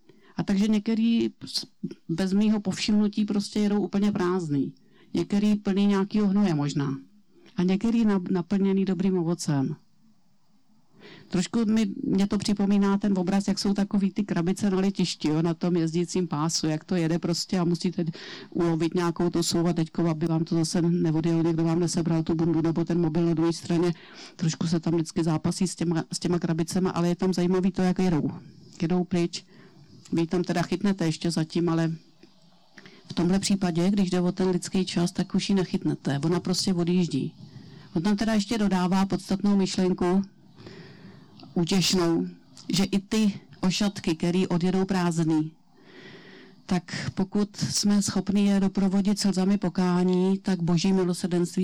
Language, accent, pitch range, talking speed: Czech, native, 170-195 Hz, 155 wpm